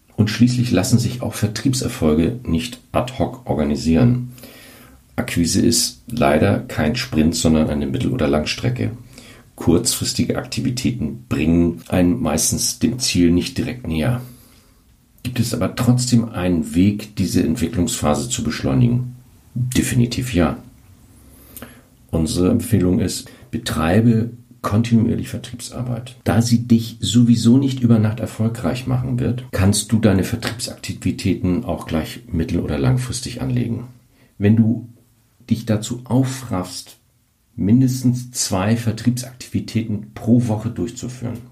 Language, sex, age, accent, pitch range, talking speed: German, male, 50-69, German, 100-120 Hz, 115 wpm